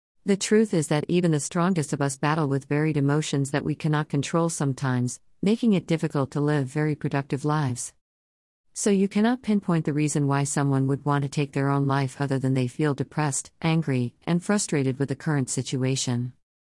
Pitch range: 130-160 Hz